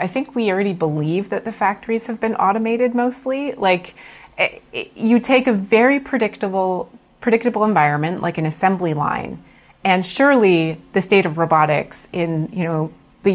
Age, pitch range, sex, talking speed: 30-49, 170-225 Hz, female, 160 wpm